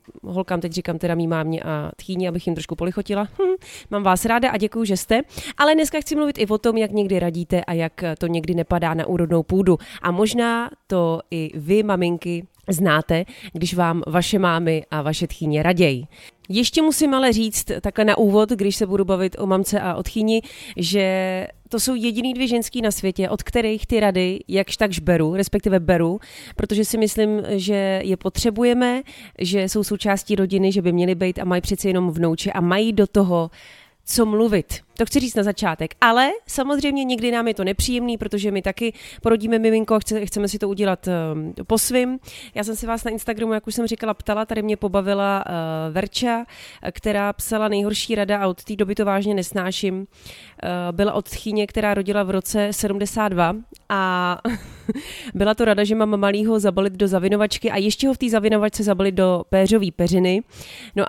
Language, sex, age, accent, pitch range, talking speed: Czech, female, 30-49, native, 180-220 Hz, 190 wpm